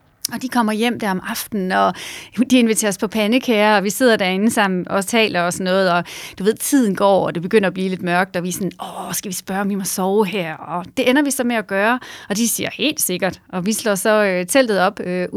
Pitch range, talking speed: 185-230 Hz, 265 wpm